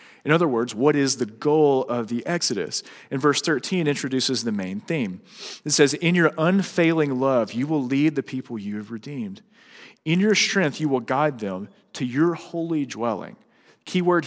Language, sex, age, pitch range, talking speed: English, male, 40-59, 115-155 Hz, 185 wpm